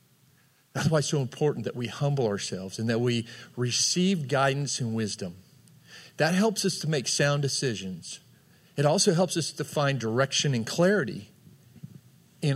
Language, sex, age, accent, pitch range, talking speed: English, male, 40-59, American, 120-150 Hz, 160 wpm